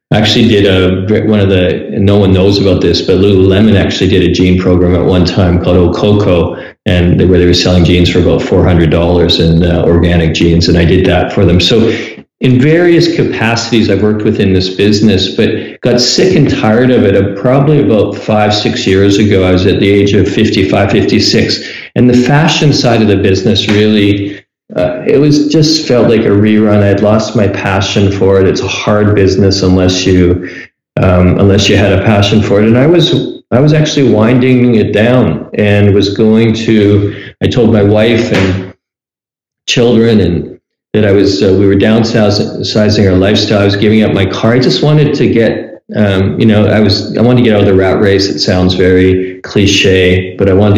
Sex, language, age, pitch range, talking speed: male, English, 40-59, 95-110 Hz, 200 wpm